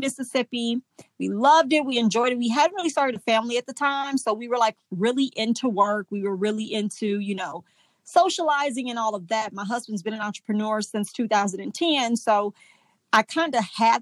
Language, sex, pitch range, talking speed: English, female, 200-235 Hz, 195 wpm